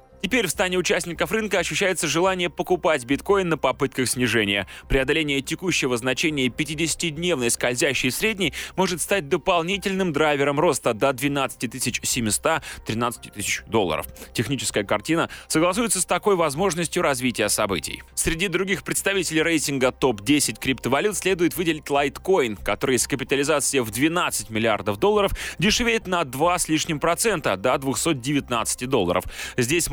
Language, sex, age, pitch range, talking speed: Russian, male, 20-39, 130-180 Hz, 120 wpm